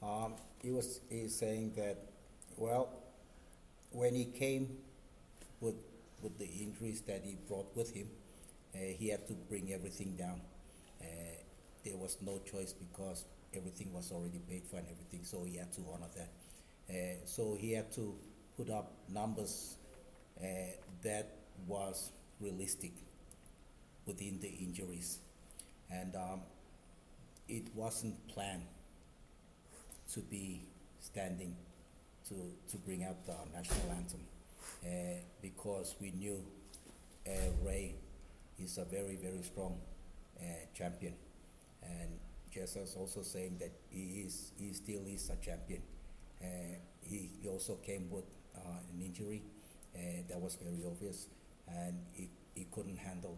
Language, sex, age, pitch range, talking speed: English, male, 50-69, 90-100 Hz, 135 wpm